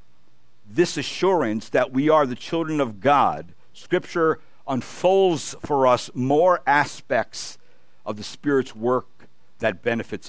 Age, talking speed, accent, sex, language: 60-79, 120 wpm, American, male, English